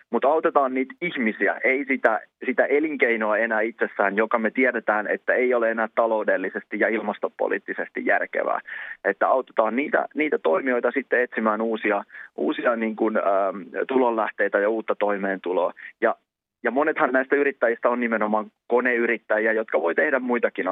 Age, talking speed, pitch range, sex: 20-39, 135 wpm, 105-125 Hz, male